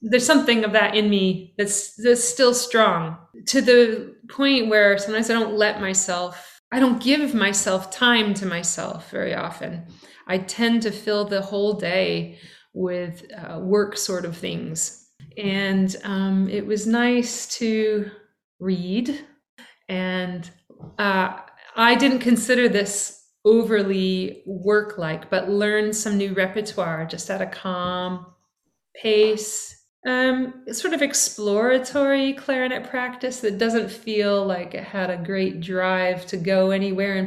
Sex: female